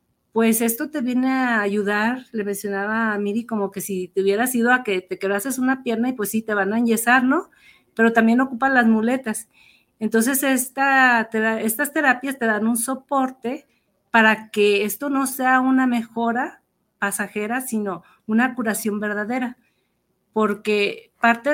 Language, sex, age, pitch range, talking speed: Spanish, female, 40-59, 210-255 Hz, 165 wpm